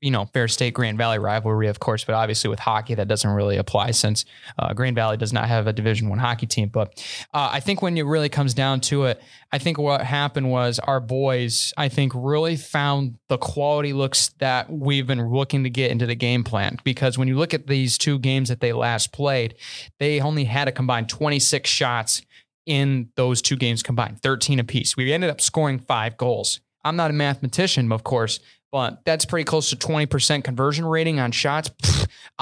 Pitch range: 125-150 Hz